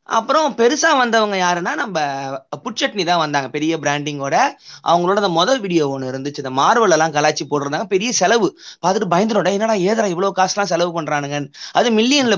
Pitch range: 165-230 Hz